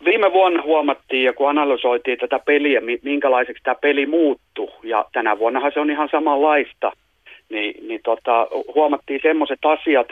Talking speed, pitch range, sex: 150 wpm, 120-150 Hz, male